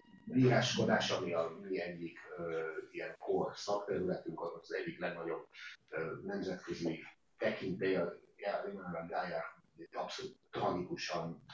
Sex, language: male, Hungarian